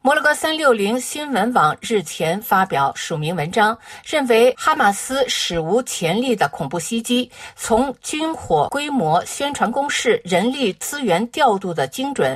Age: 50-69